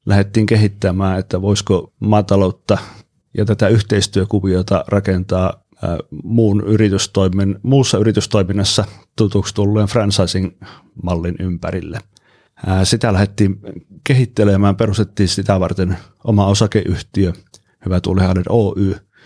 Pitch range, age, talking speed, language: 95-105 Hz, 30-49, 95 wpm, Finnish